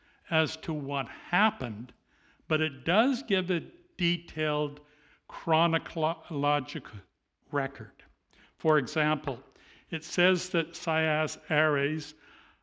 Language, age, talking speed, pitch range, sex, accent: English, 60-79, 90 wpm, 135-175 Hz, male, American